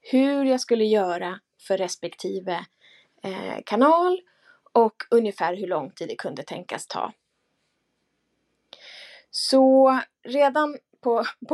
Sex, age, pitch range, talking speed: female, 20-39, 200-265 Hz, 105 wpm